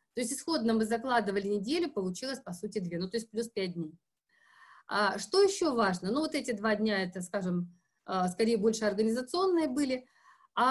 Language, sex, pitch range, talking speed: Russian, female, 200-255 Hz, 180 wpm